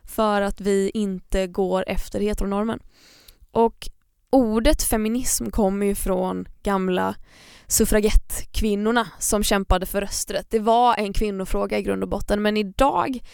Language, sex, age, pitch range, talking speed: Swedish, female, 20-39, 200-235 Hz, 130 wpm